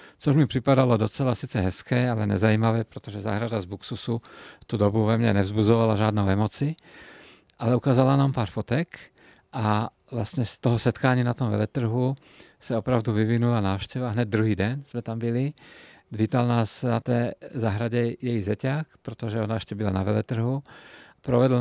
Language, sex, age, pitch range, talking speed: Czech, male, 50-69, 110-125 Hz, 155 wpm